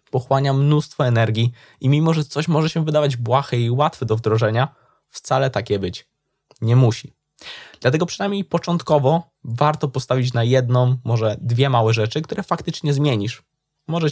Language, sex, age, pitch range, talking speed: Polish, male, 20-39, 115-145 Hz, 150 wpm